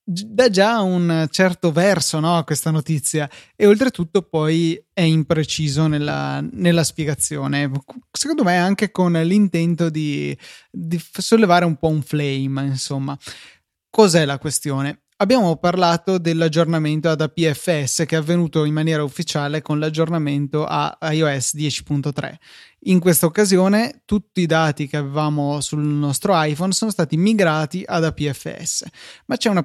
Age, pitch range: 20-39, 150-180 Hz